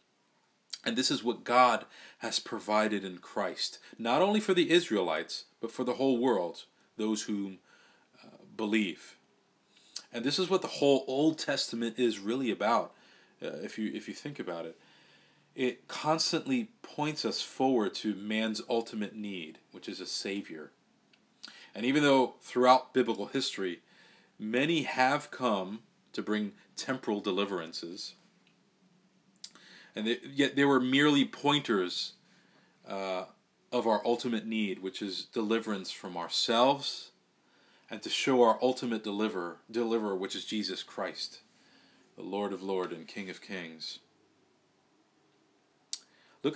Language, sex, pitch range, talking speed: English, male, 105-135 Hz, 135 wpm